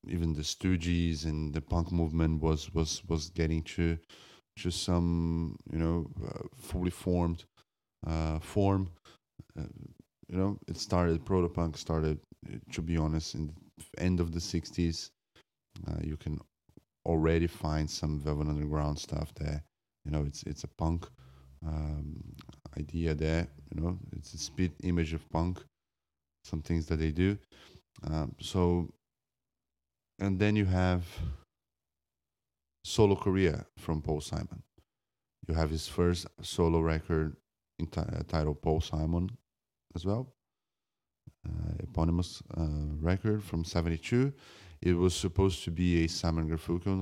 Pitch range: 80-90 Hz